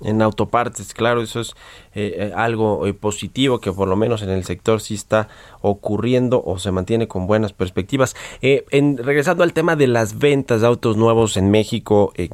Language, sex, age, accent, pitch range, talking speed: Spanish, male, 30-49, Mexican, 100-125 Hz, 190 wpm